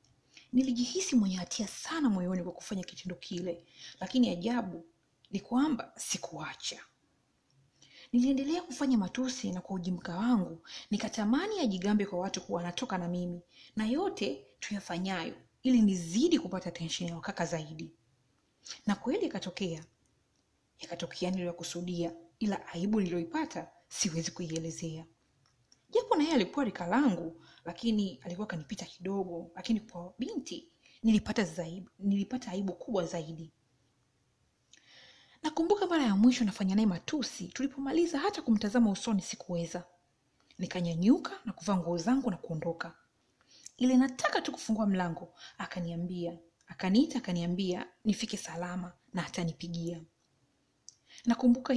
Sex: female